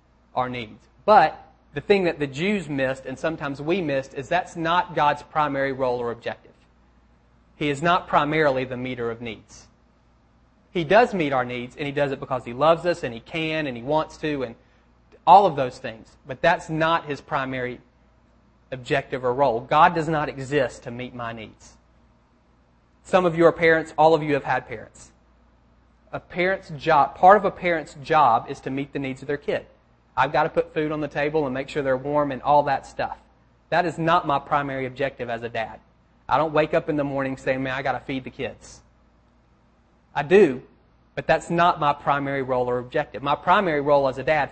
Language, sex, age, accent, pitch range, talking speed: English, male, 30-49, American, 125-160 Hz, 210 wpm